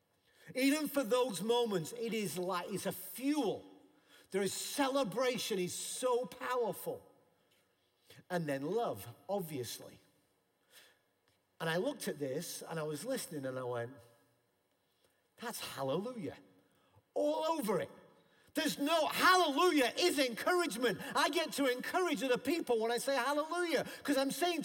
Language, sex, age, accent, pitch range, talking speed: English, male, 50-69, British, 235-330 Hz, 135 wpm